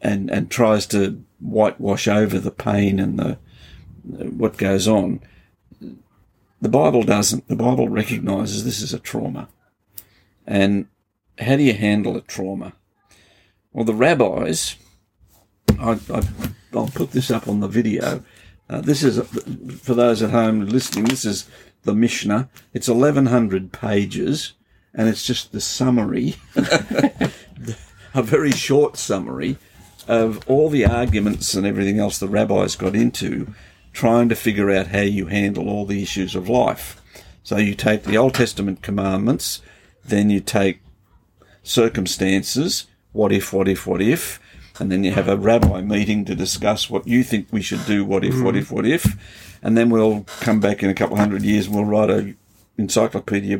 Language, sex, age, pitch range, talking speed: English, male, 50-69, 100-115 Hz, 165 wpm